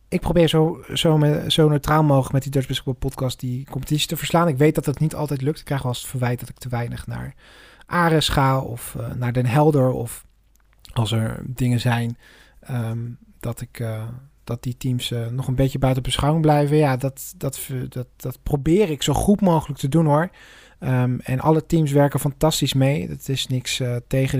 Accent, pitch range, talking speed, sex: Dutch, 125-155 Hz, 210 wpm, male